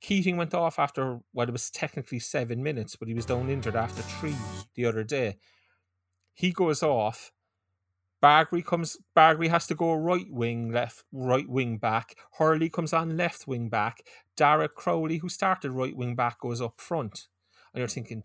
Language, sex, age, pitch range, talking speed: English, male, 30-49, 120-175 Hz, 180 wpm